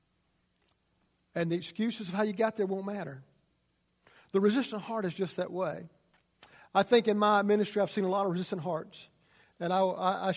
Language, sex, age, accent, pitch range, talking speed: English, male, 50-69, American, 180-215 Hz, 185 wpm